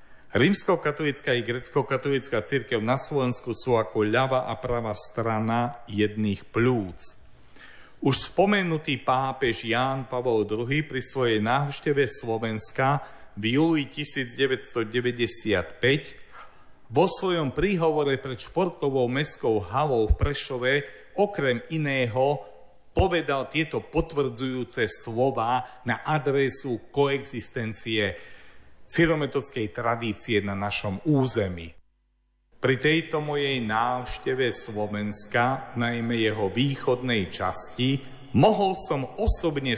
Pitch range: 115-140 Hz